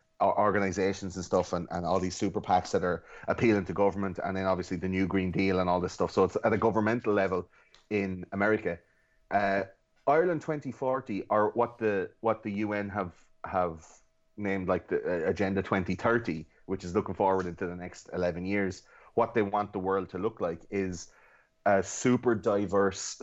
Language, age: English, 30-49